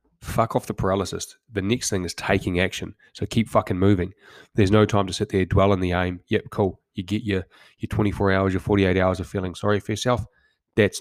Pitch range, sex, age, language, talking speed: 95-105 Hz, male, 20-39, English, 225 wpm